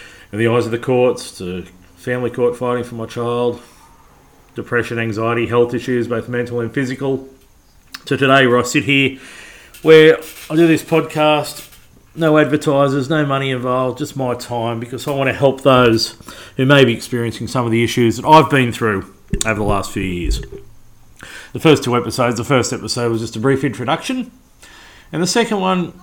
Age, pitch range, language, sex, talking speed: 40-59, 115-150 Hz, English, male, 180 wpm